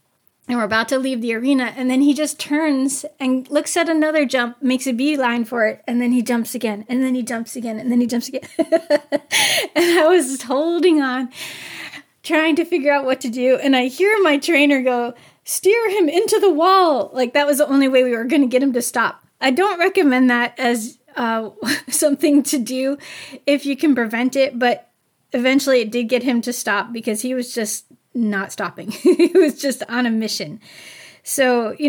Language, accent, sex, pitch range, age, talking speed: English, American, female, 225-280 Hz, 30-49, 205 wpm